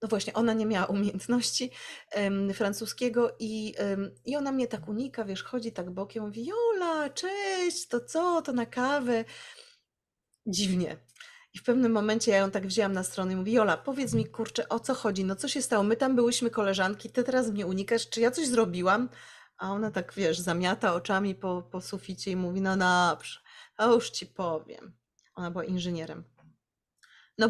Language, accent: Polish, native